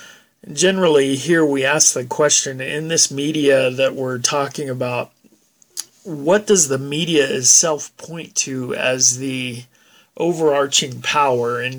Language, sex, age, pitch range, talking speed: English, male, 40-59, 130-150 Hz, 125 wpm